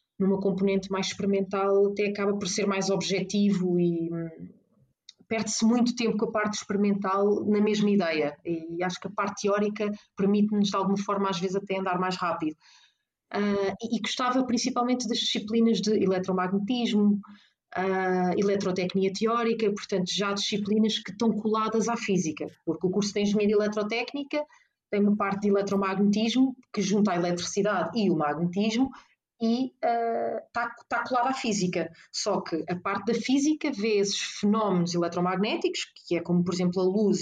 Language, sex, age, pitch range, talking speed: Portuguese, female, 30-49, 185-225 Hz, 155 wpm